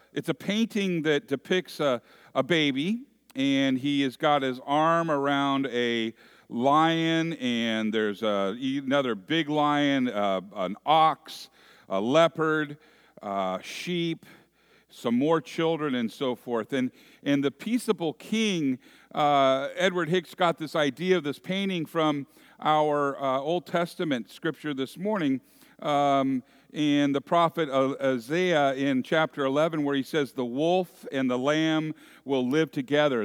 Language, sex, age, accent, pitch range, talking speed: English, male, 50-69, American, 130-165 Hz, 140 wpm